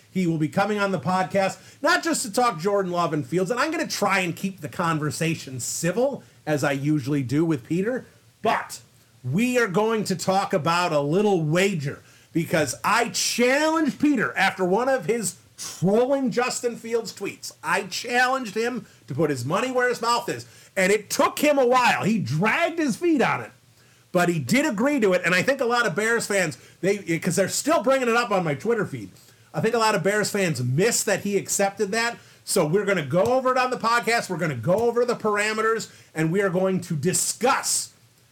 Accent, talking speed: American, 215 wpm